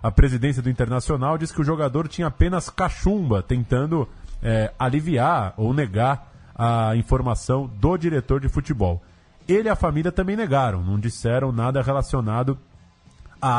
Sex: male